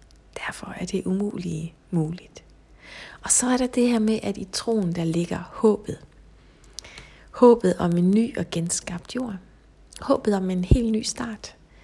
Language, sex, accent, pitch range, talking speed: Danish, female, native, 185-240 Hz, 155 wpm